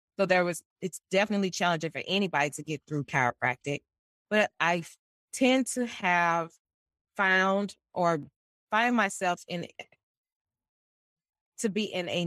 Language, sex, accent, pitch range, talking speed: English, female, American, 145-190 Hz, 130 wpm